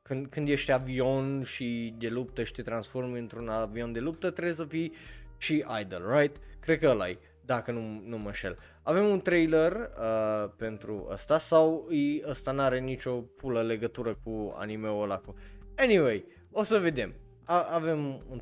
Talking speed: 170 wpm